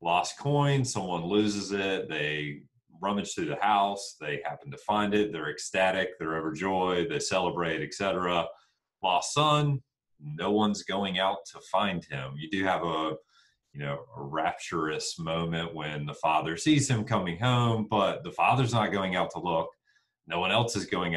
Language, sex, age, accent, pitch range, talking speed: English, male, 40-59, American, 75-100 Hz, 170 wpm